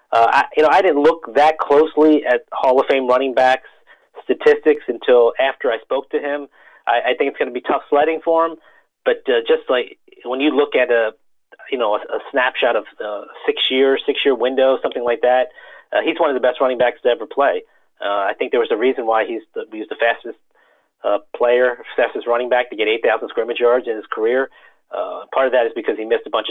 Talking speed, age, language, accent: 230 wpm, 30-49, English, American